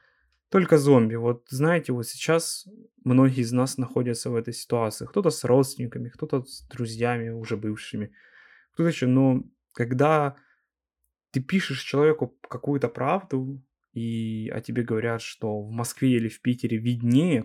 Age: 20-39